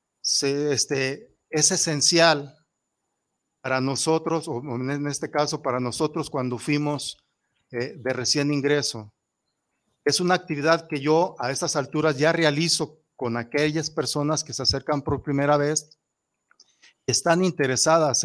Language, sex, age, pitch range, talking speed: Spanish, male, 50-69, 120-150 Hz, 125 wpm